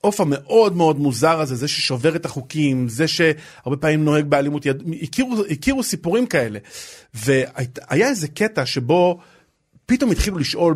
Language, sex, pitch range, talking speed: Hebrew, male, 130-170 Hz, 150 wpm